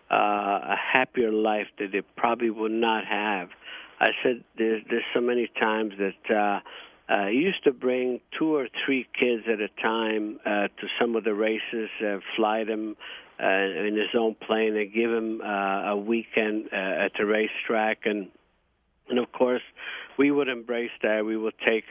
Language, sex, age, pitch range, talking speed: English, male, 50-69, 105-120 Hz, 180 wpm